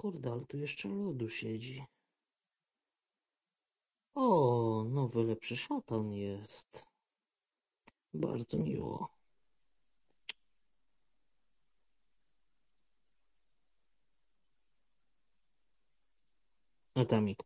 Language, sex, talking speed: Polish, male, 45 wpm